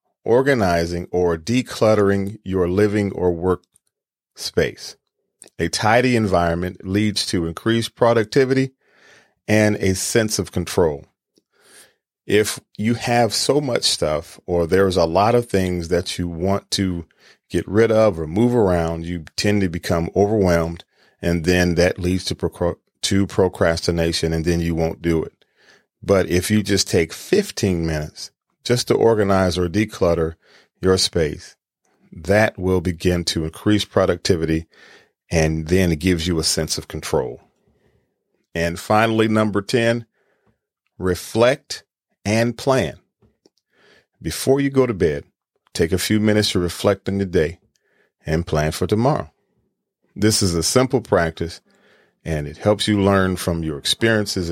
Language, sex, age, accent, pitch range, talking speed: English, male, 40-59, American, 85-110 Hz, 140 wpm